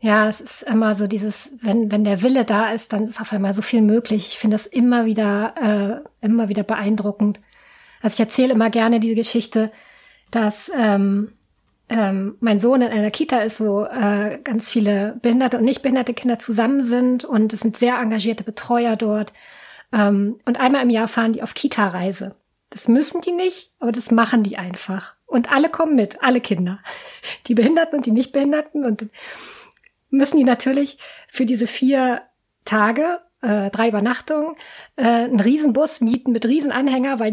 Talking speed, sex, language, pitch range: 175 wpm, female, German, 215-265 Hz